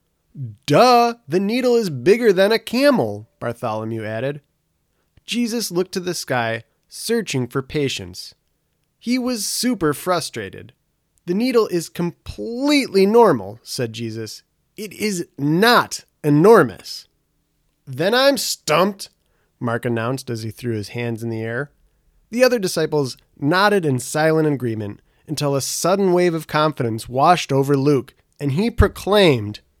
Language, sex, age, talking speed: English, male, 30-49, 130 wpm